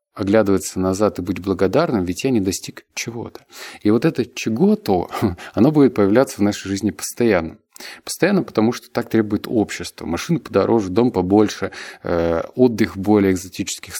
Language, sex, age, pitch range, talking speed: Russian, male, 20-39, 95-120 Hz, 150 wpm